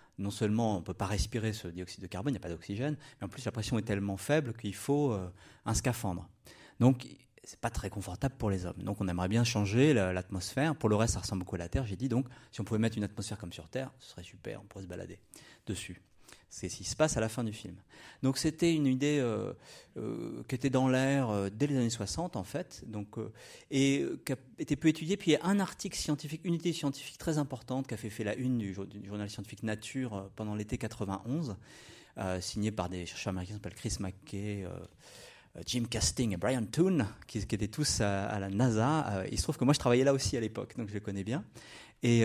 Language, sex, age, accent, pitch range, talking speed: French, male, 30-49, French, 100-135 Hz, 255 wpm